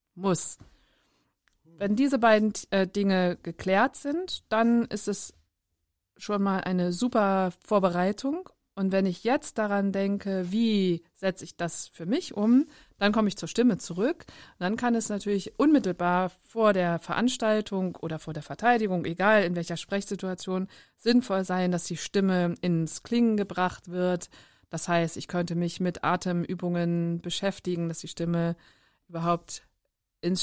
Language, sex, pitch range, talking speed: German, female, 175-215 Hz, 145 wpm